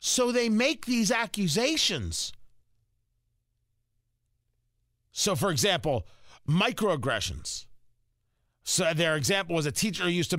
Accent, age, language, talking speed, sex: American, 50-69, English, 100 wpm, male